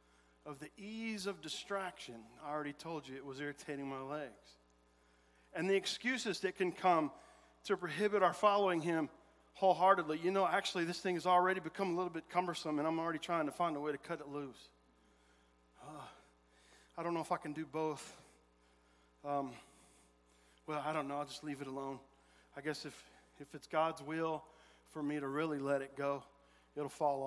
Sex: male